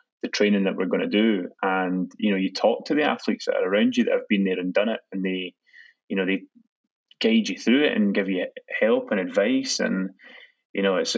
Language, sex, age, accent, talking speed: English, male, 10-29, British, 235 wpm